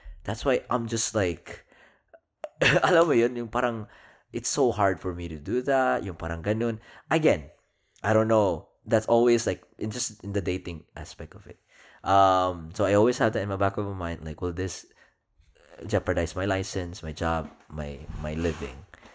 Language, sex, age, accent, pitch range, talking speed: Filipino, male, 20-39, native, 80-105 Hz, 180 wpm